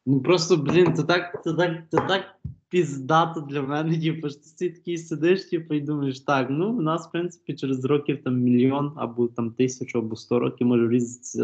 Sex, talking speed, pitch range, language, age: male, 180 wpm, 115-145 Hz, Ukrainian, 20-39